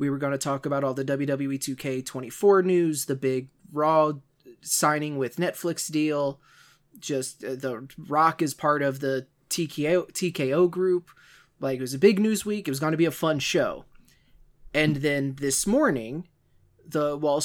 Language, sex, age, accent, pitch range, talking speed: English, male, 20-39, American, 140-170 Hz, 170 wpm